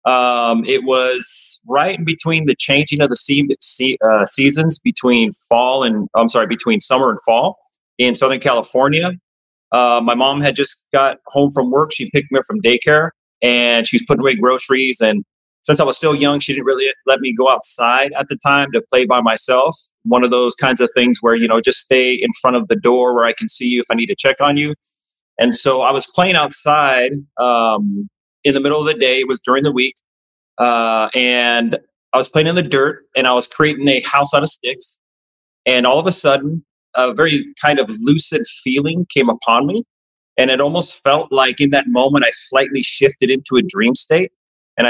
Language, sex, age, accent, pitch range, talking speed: English, male, 30-49, American, 125-150 Hz, 215 wpm